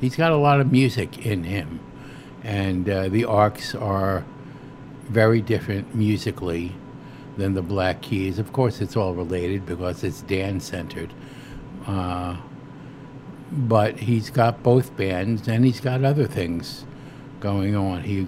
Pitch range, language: 95-135 Hz, English